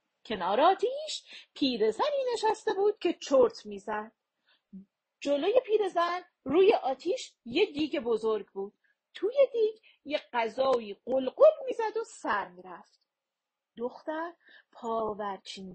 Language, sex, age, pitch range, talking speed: Persian, female, 40-59, 220-345 Hz, 105 wpm